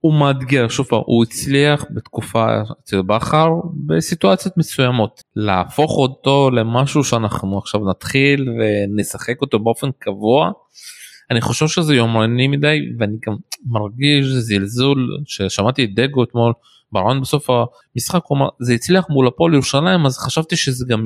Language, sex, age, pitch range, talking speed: Hebrew, male, 20-39, 110-140 Hz, 125 wpm